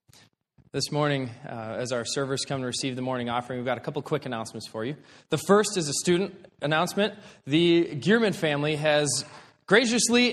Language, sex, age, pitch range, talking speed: English, male, 20-39, 150-190 Hz, 180 wpm